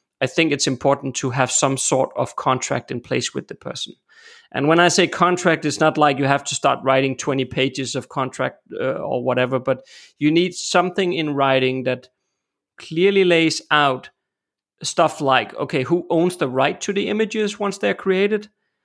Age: 30-49